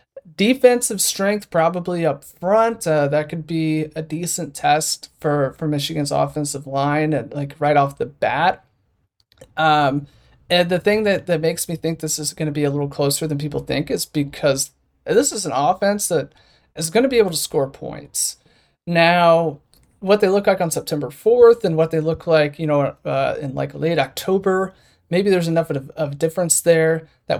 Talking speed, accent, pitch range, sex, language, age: 190 wpm, American, 140-170 Hz, male, English, 30-49